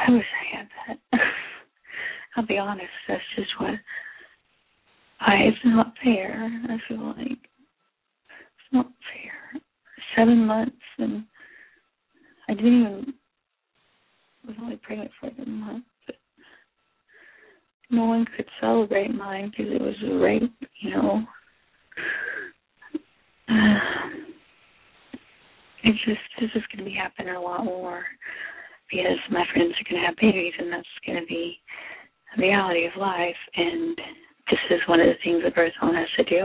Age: 30-49